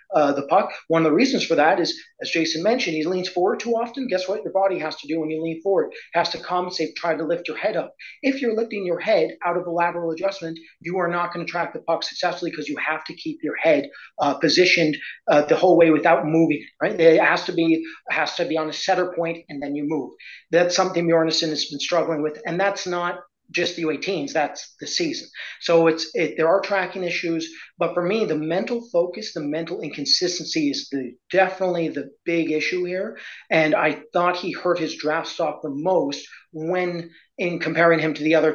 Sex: male